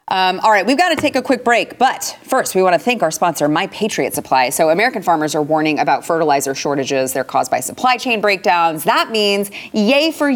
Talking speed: 225 wpm